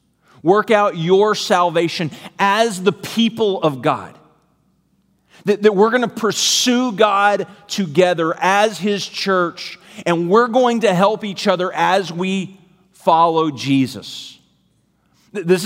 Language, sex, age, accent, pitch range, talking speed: English, male, 40-59, American, 160-200 Hz, 125 wpm